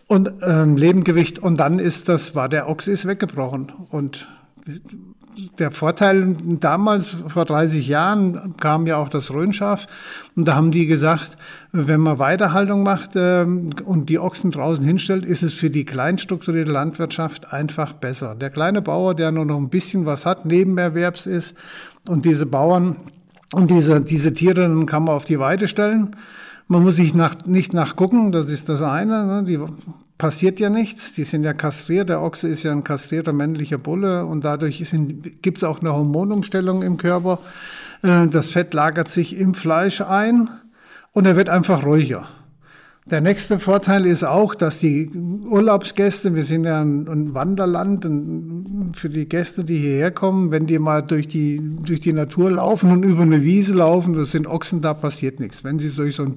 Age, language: 50-69, German